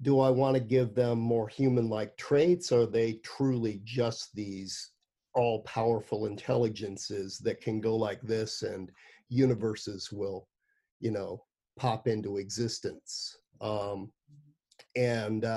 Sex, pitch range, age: male, 110-130 Hz, 50-69